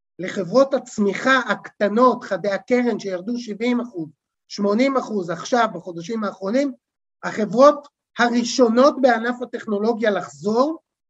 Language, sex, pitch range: Hebrew, male, 205-270 Hz